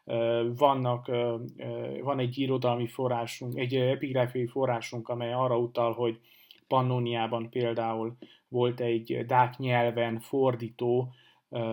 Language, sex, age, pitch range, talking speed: Hungarian, male, 30-49, 120-130 Hz, 95 wpm